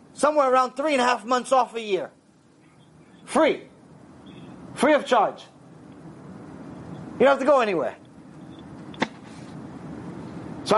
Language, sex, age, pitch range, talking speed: English, male, 30-49, 190-280 Hz, 115 wpm